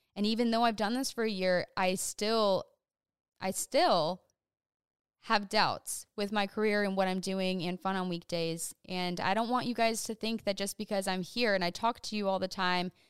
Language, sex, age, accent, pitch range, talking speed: English, female, 10-29, American, 185-215 Hz, 215 wpm